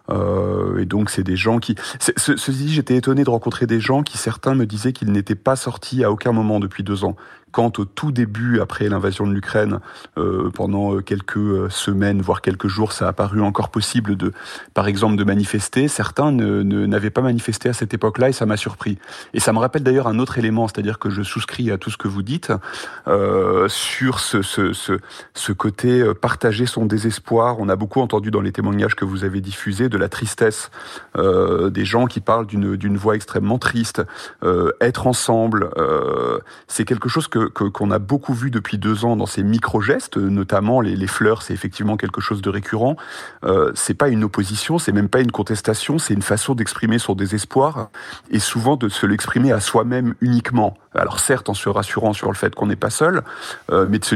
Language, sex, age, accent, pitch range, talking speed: French, male, 30-49, French, 100-120 Hz, 205 wpm